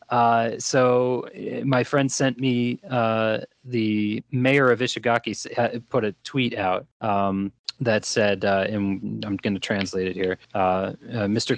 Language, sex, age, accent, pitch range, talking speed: English, male, 30-49, American, 100-125 Hz, 150 wpm